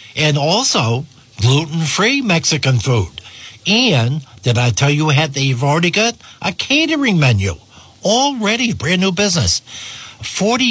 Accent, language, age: American, English, 60-79